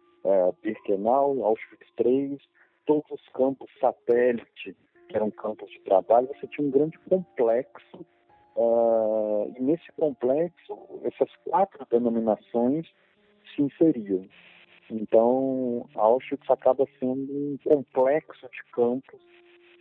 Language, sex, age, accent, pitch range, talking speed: Portuguese, male, 40-59, Brazilian, 105-155 Hz, 105 wpm